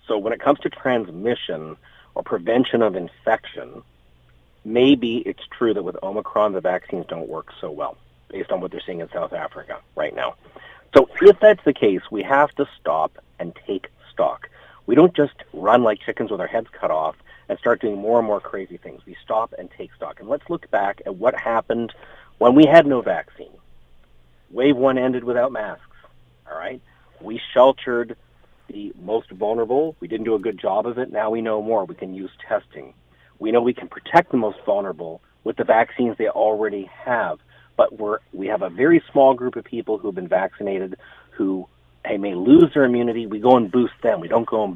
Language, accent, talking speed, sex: English, American, 200 wpm, male